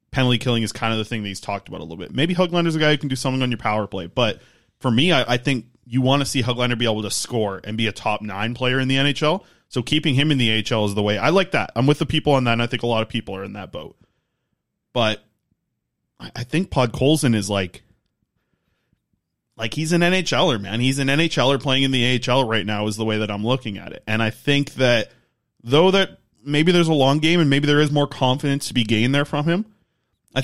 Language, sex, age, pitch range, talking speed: English, male, 20-39, 110-145 Hz, 260 wpm